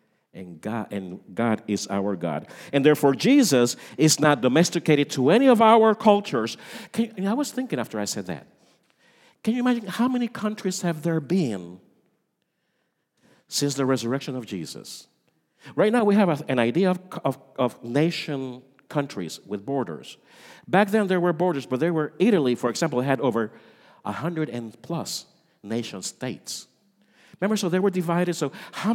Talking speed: 165 wpm